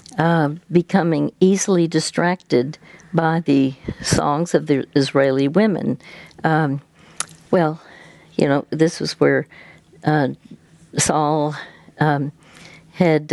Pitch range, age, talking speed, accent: 145-175 Hz, 60-79, 100 wpm, American